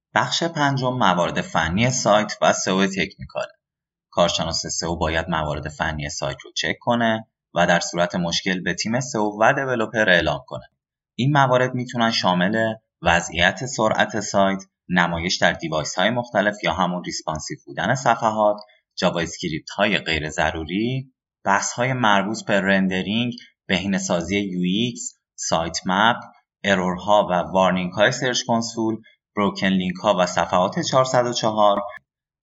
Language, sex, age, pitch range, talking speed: Persian, male, 20-39, 90-120 Hz, 125 wpm